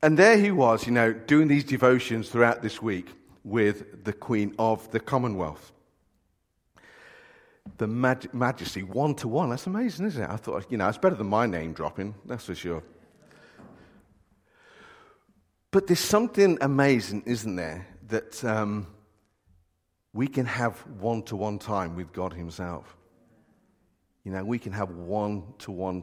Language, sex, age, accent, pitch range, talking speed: English, male, 50-69, British, 105-130 Hz, 140 wpm